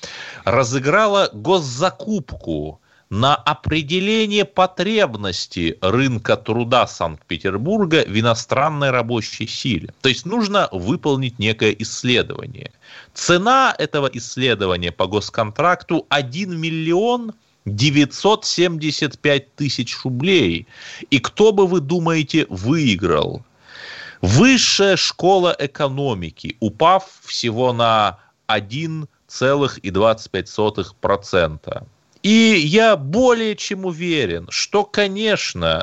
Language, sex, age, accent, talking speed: Russian, male, 30-49, native, 90 wpm